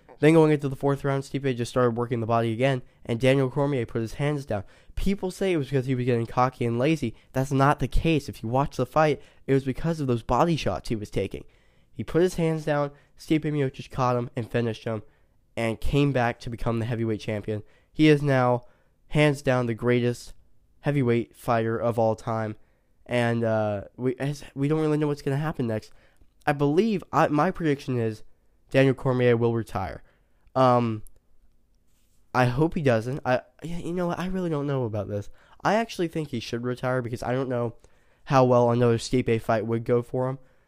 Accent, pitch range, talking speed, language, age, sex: American, 115-140 Hz, 205 wpm, English, 10-29, male